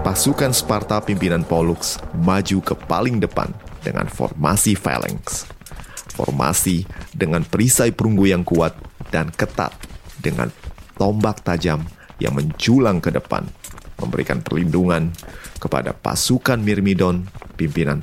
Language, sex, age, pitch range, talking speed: Indonesian, male, 30-49, 85-110 Hz, 105 wpm